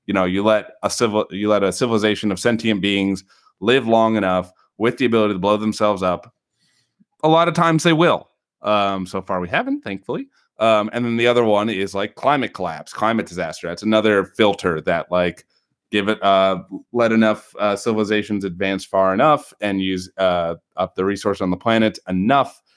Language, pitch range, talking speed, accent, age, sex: English, 95-110 Hz, 190 wpm, American, 30-49, male